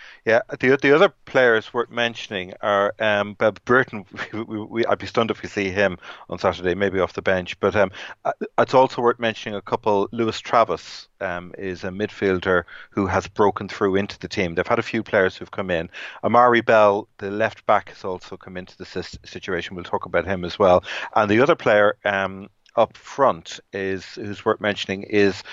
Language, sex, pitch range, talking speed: English, male, 95-110 Hz, 200 wpm